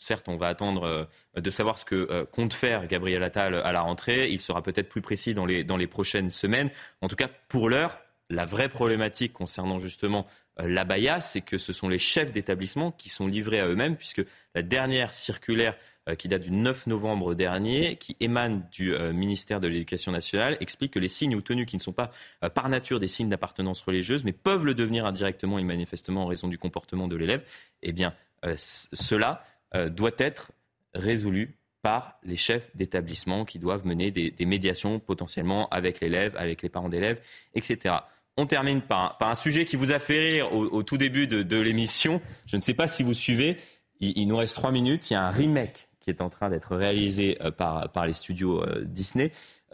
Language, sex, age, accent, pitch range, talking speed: French, male, 30-49, French, 90-120 Hz, 210 wpm